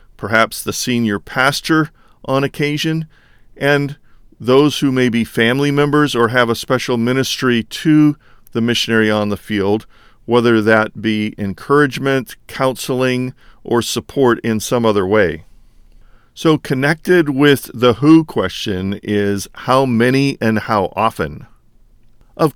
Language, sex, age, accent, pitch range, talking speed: English, male, 40-59, American, 110-130 Hz, 130 wpm